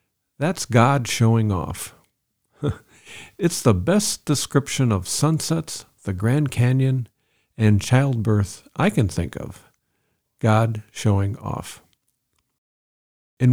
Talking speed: 100 wpm